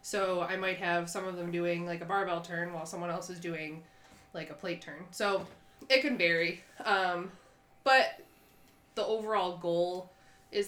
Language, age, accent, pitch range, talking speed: English, 20-39, American, 170-205 Hz, 175 wpm